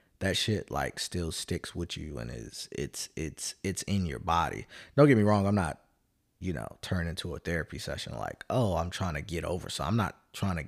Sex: male